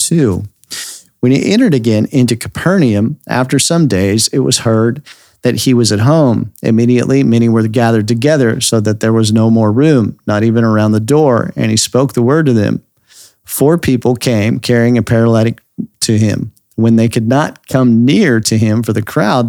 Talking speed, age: 185 wpm, 40-59